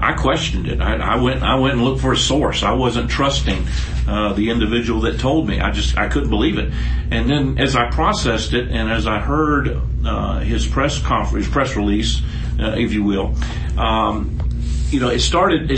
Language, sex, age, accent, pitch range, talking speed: English, male, 50-69, American, 70-120 Hz, 200 wpm